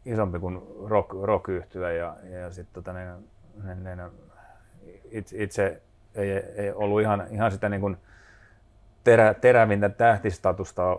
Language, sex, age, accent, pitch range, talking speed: Finnish, male, 30-49, native, 90-100 Hz, 120 wpm